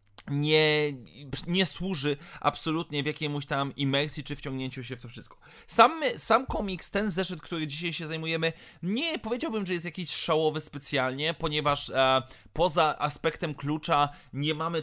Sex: male